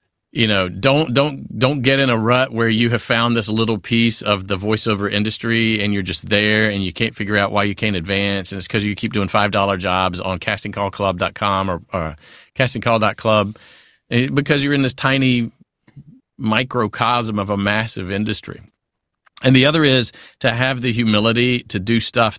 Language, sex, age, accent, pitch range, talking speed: English, male, 40-59, American, 105-135 Hz, 180 wpm